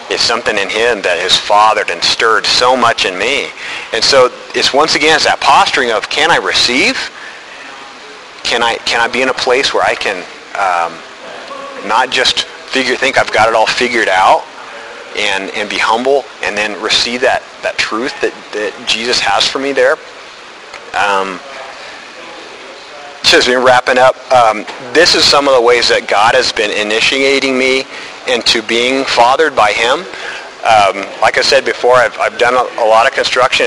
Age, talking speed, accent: 40-59, 175 wpm, American